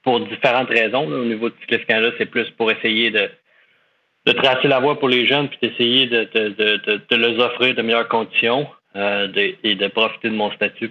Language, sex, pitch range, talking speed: French, male, 105-120 Hz, 220 wpm